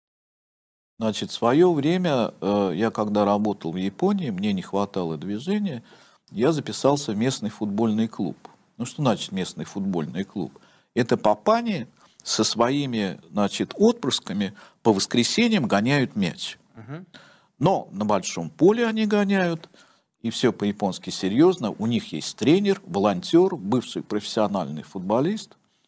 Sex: male